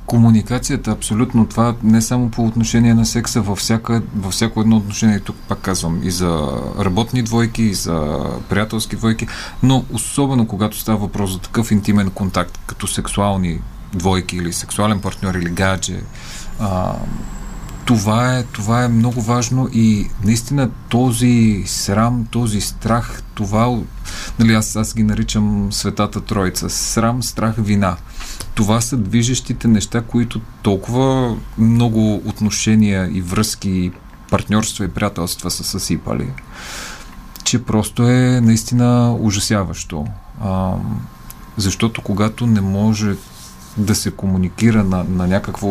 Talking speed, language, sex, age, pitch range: 130 wpm, Bulgarian, male, 40-59, 95-115 Hz